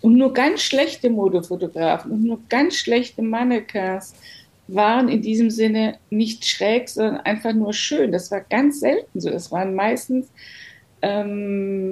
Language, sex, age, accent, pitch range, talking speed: German, female, 50-69, German, 190-230 Hz, 145 wpm